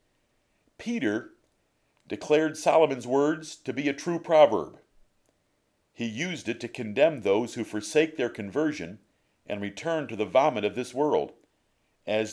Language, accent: English, American